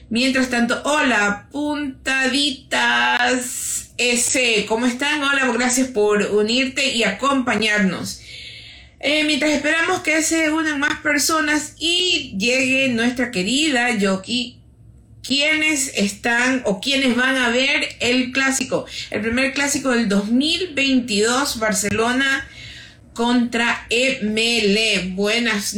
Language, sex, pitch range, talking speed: Spanish, female, 210-270 Hz, 100 wpm